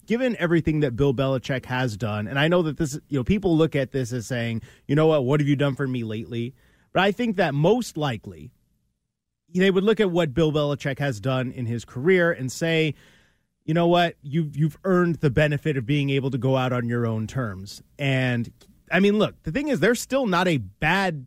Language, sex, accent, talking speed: English, male, American, 225 wpm